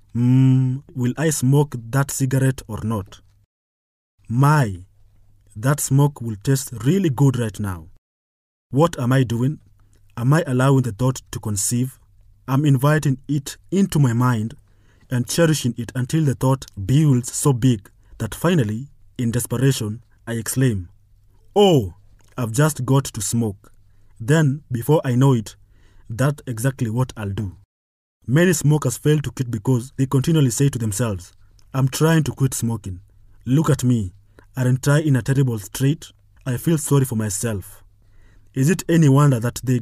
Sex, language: male, English